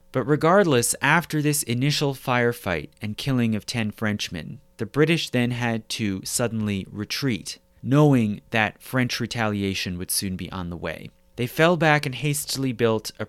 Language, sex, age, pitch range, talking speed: English, male, 30-49, 105-130 Hz, 160 wpm